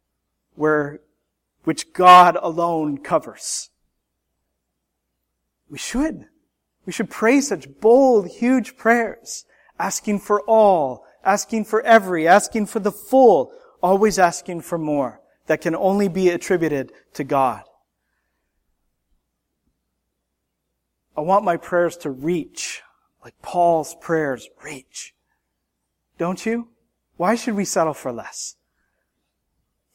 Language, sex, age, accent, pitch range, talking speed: English, male, 30-49, American, 150-225 Hz, 105 wpm